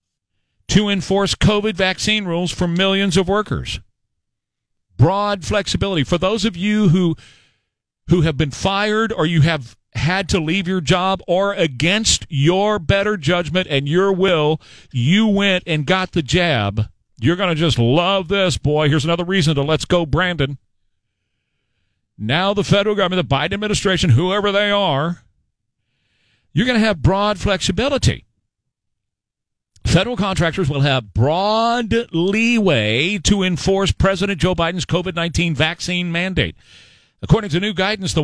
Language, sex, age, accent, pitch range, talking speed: English, male, 50-69, American, 125-195 Hz, 145 wpm